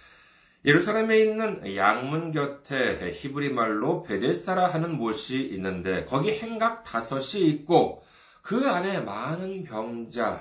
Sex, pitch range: male, 125-190 Hz